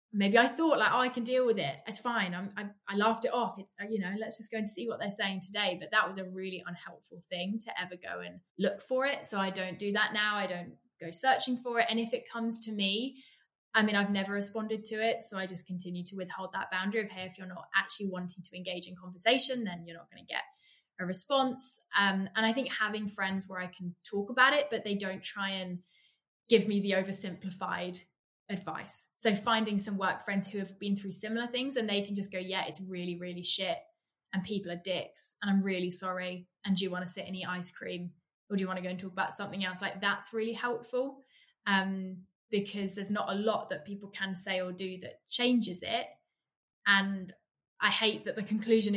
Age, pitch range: 20-39, 185-220 Hz